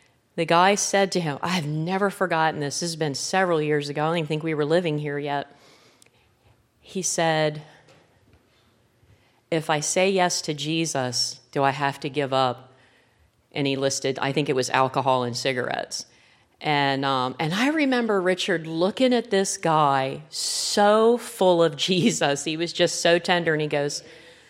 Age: 40-59